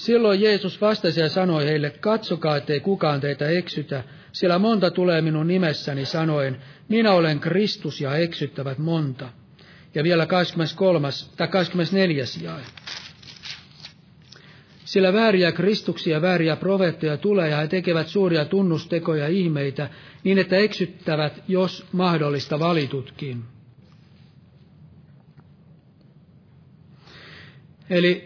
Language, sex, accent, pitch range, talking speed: Finnish, male, native, 150-185 Hz, 100 wpm